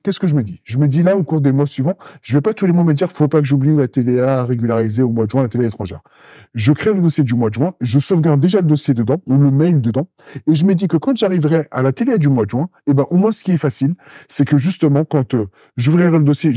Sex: male